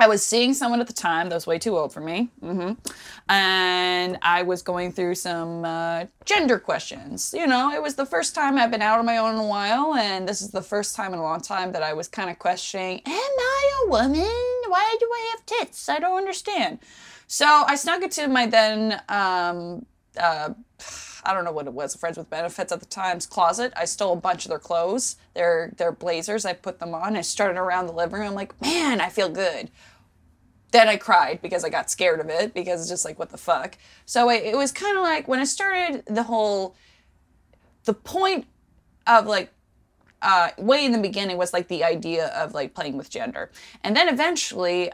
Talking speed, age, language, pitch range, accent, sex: 220 wpm, 20-39, English, 175-250 Hz, American, female